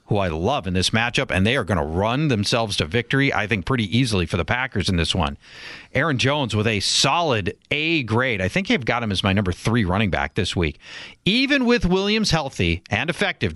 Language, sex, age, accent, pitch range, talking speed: English, male, 40-59, American, 115-170 Hz, 225 wpm